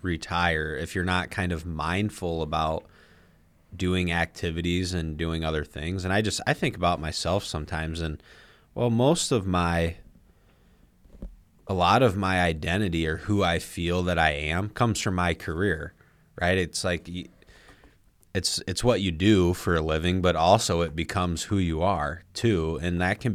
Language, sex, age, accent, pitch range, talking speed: English, male, 30-49, American, 80-95 Hz, 165 wpm